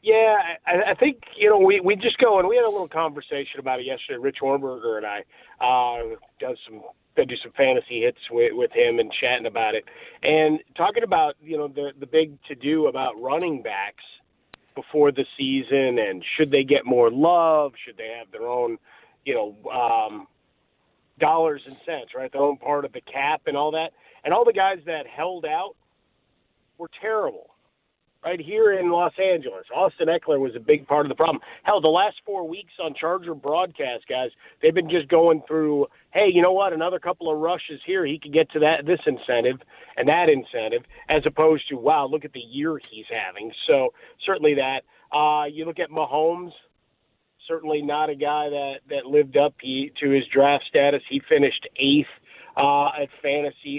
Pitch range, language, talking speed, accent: 145-230 Hz, English, 195 wpm, American